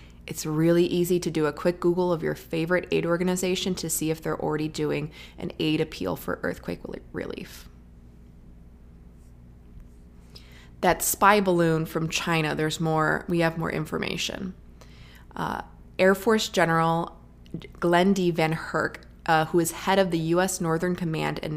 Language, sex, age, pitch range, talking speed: English, female, 20-39, 155-180 Hz, 150 wpm